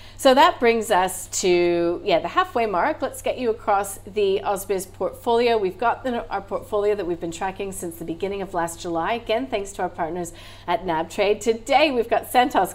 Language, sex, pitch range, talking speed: English, female, 180-240 Hz, 195 wpm